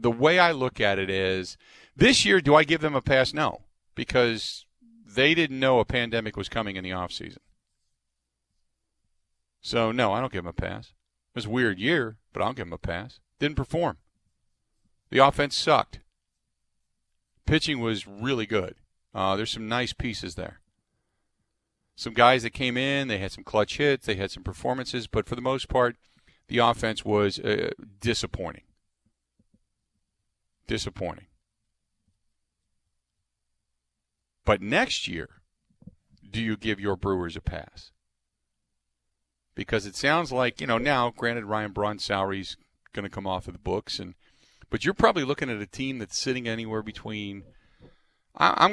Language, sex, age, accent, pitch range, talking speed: English, male, 40-59, American, 95-130 Hz, 160 wpm